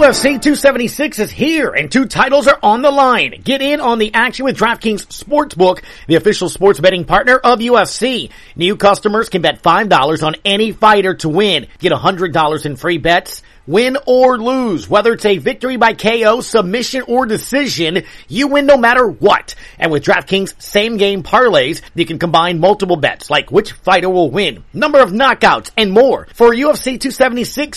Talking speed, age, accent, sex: 175 wpm, 40-59, American, male